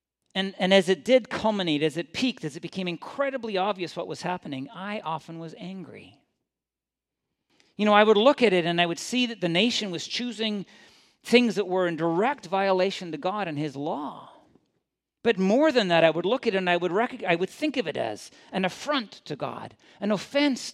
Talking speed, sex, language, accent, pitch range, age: 205 wpm, male, English, American, 135-190 Hz, 50-69